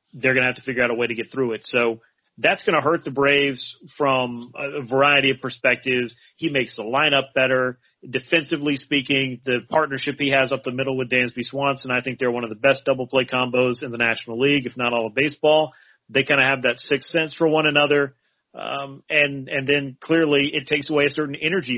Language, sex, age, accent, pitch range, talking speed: English, male, 40-59, American, 125-145 Hz, 225 wpm